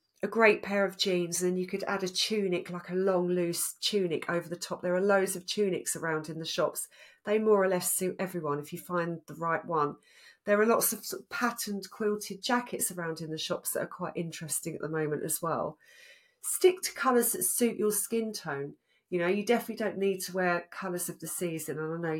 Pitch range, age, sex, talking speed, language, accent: 170-210 Hz, 40-59, female, 225 wpm, English, British